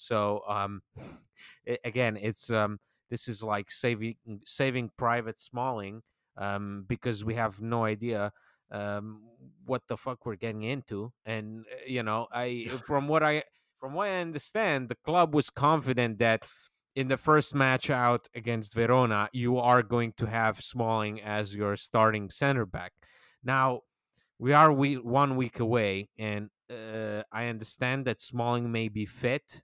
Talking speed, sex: 150 wpm, male